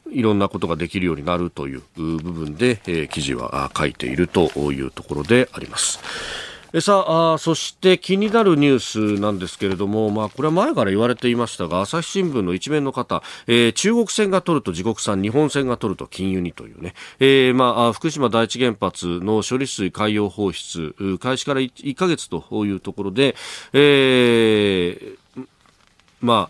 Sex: male